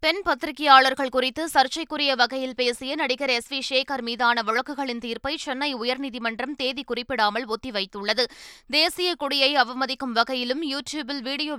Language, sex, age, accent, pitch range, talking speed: Tamil, female, 20-39, native, 235-285 Hz, 125 wpm